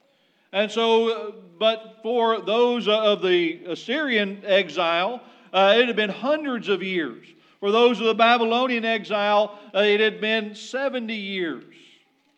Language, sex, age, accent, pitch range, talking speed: English, male, 40-59, American, 200-240 Hz, 135 wpm